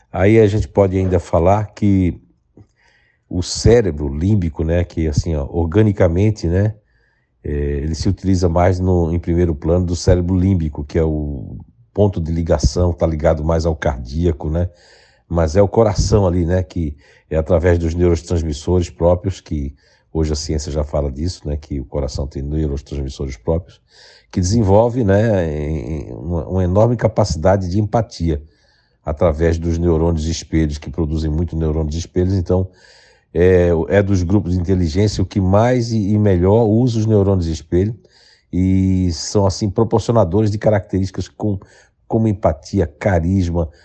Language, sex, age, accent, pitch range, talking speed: Portuguese, male, 60-79, Brazilian, 80-100 Hz, 150 wpm